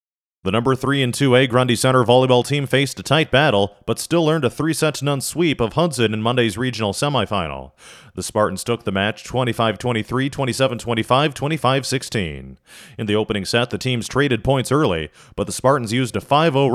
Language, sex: English, male